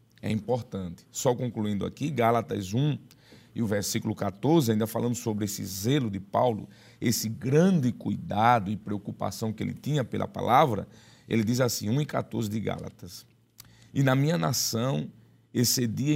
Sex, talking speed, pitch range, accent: male, 150 wpm, 105-130 Hz, Brazilian